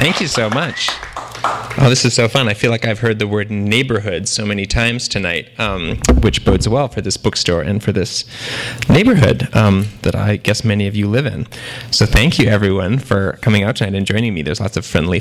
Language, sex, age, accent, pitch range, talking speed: English, male, 30-49, American, 100-120 Hz, 220 wpm